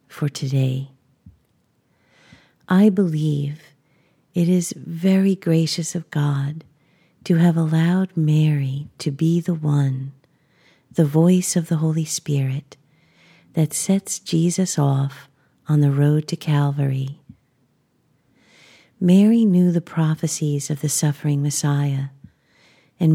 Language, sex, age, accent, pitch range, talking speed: English, female, 50-69, American, 145-170 Hz, 110 wpm